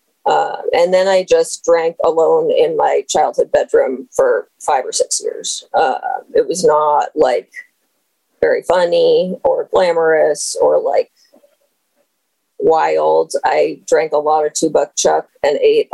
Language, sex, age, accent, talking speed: English, female, 30-49, American, 145 wpm